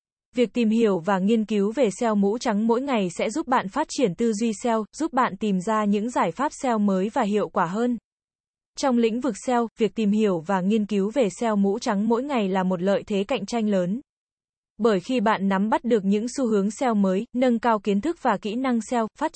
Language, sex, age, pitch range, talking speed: Vietnamese, female, 20-39, 205-245 Hz, 235 wpm